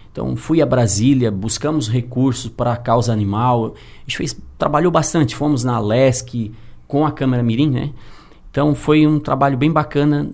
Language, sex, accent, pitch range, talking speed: Portuguese, male, Brazilian, 115-135 Hz, 170 wpm